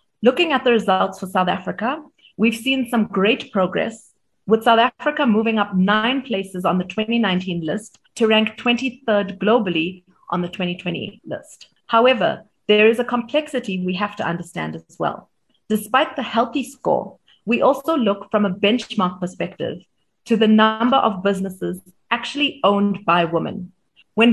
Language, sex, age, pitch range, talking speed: English, female, 30-49, 185-235 Hz, 155 wpm